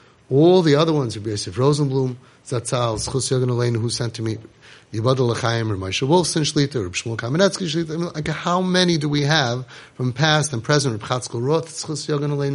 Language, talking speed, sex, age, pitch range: English, 170 wpm, male, 30-49, 120-155 Hz